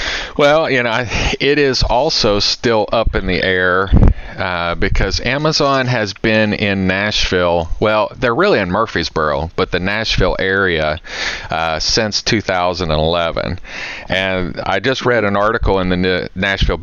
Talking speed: 140 wpm